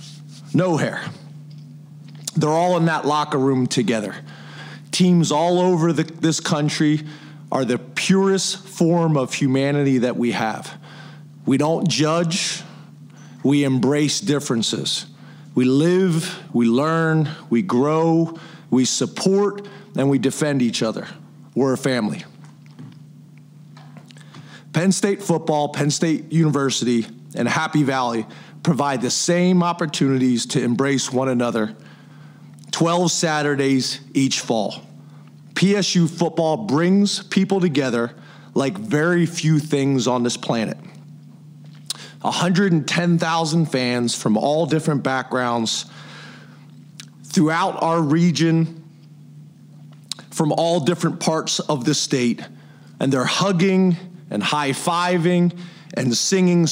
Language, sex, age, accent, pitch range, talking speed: English, male, 40-59, American, 135-170 Hz, 110 wpm